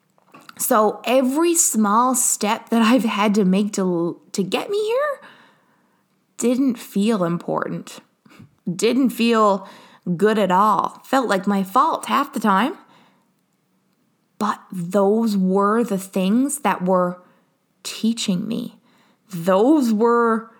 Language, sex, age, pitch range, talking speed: English, female, 20-39, 190-255 Hz, 115 wpm